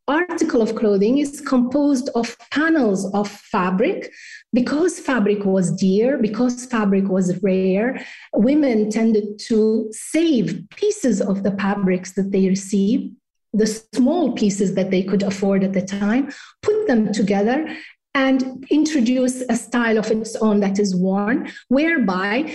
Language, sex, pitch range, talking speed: English, female, 210-270 Hz, 140 wpm